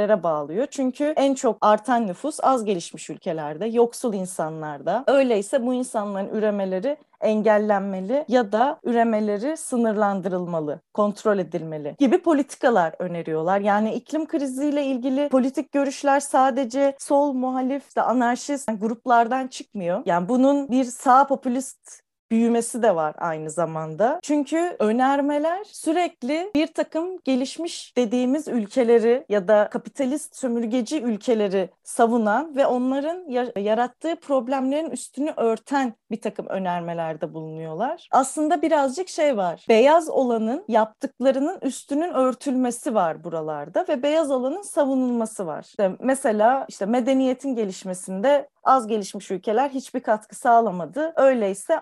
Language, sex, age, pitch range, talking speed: Turkish, female, 30-49, 205-275 Hz, 115 wpm